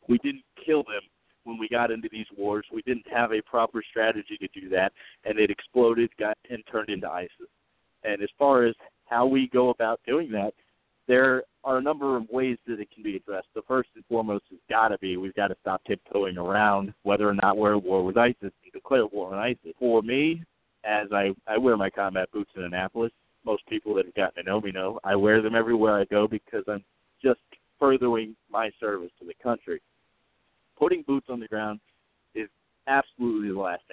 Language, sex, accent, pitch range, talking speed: English, male, American, 105-130 Hz, 210 wpm